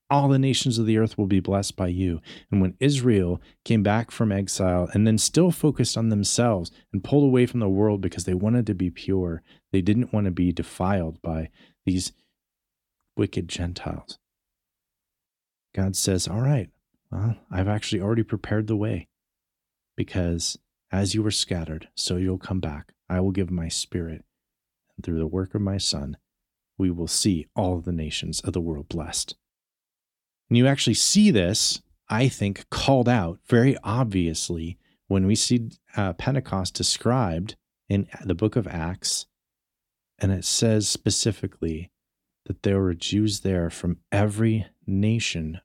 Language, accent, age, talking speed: English, American, 40-59, 160 wpm